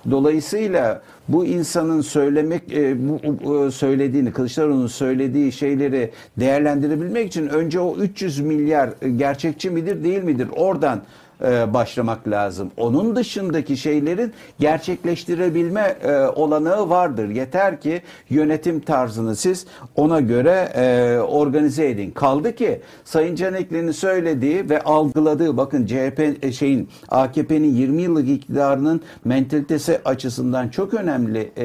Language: Turkish